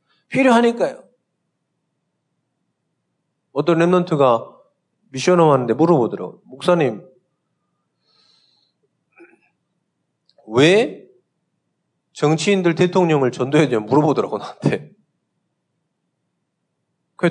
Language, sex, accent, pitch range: Korean, male, native, 155-220 Hz